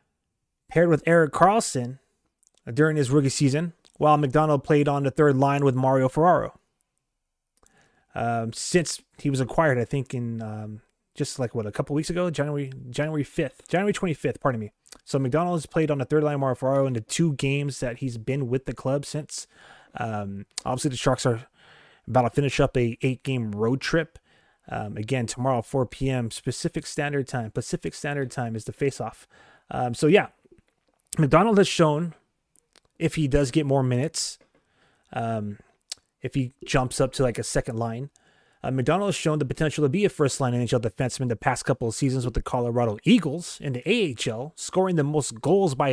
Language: English